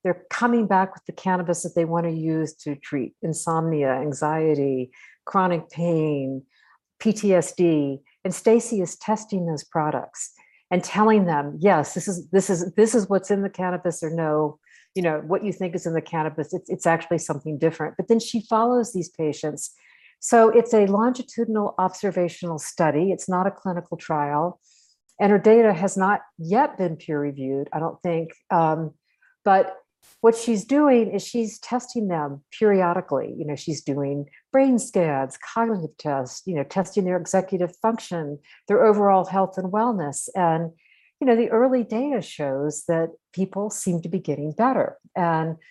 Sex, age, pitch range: female, 50-69, 160-210 Hz